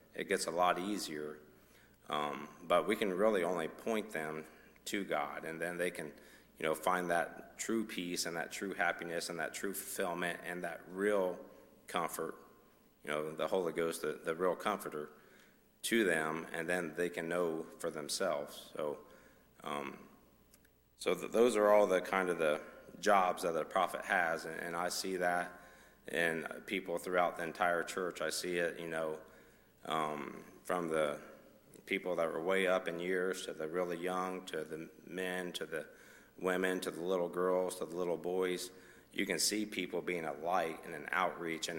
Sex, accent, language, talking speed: male, American, English, 180 wpm